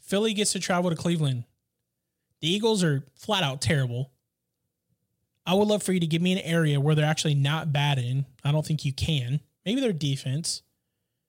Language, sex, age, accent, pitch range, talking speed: English, male, 20-39, American, 120-155 Hz, 190 wpm